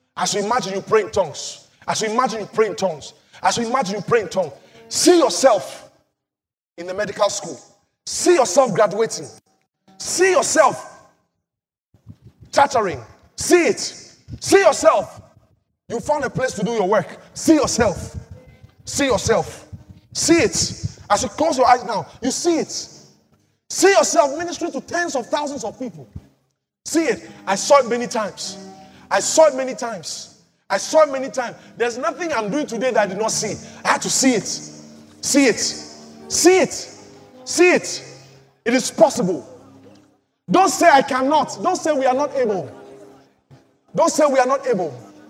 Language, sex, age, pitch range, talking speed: English, male, 30-49, 210-305 Hz, 165 wpm